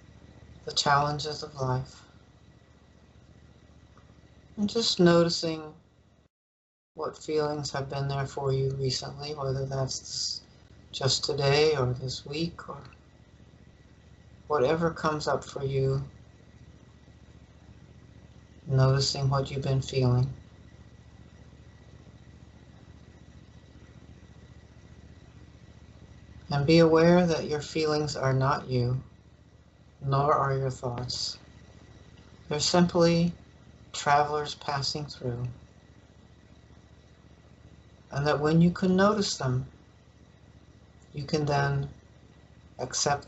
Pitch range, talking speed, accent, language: 130-155 Hz, 85 wpm, American, English